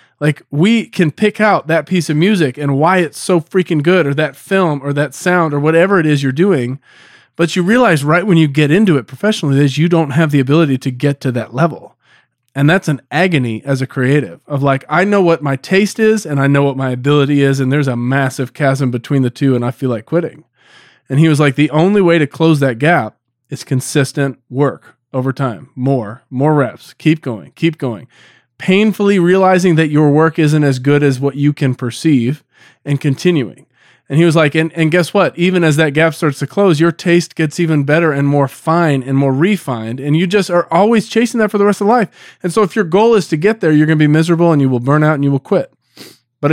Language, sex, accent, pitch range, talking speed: English, male, American, 140-180 Hz, 235 wpm